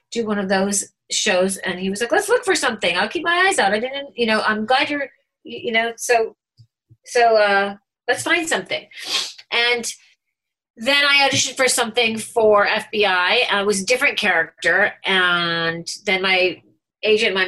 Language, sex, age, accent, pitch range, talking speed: English, female, 40-59, American, 195-275 Hz, 175 wpm